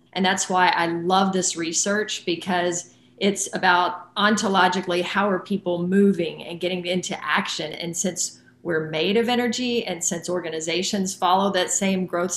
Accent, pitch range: American, 175-200 Hz